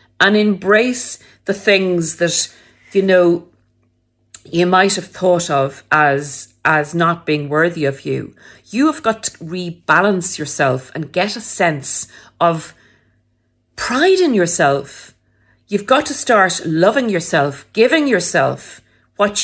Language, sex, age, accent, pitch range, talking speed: English, female, 50-69, Irish, 145-195 Hz, 125 wpm